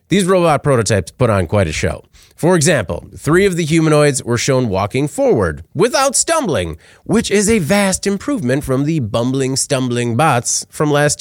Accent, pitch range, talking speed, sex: American, 105-155 Hz, 170 wpm, male